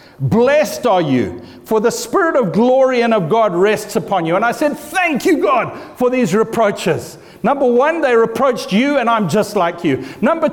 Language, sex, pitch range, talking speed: English, male, 165-270 Hz, 195 wpm